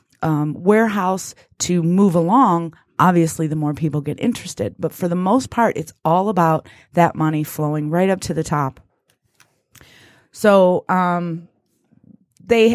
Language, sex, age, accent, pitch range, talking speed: English, female, 30-49, American, 155-200 Hz, 140 wpm